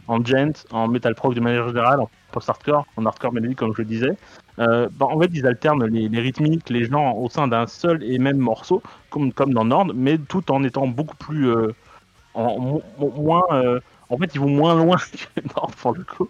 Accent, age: French, 30-49